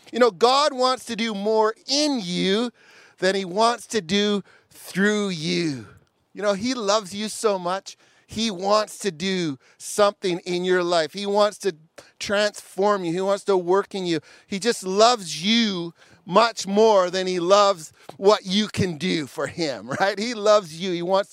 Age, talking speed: 40-59, 175 wpm